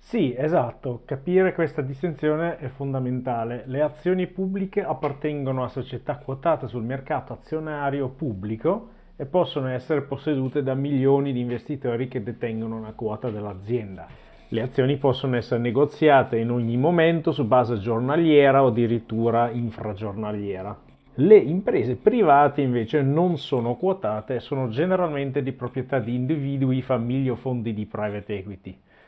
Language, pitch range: Italian, 120-150 Hz